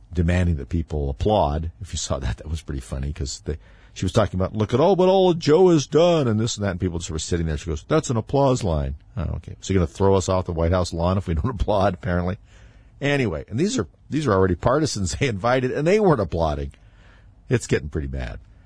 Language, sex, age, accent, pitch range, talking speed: English, male, 50-69, American, 90-115 Hz, 250 wpm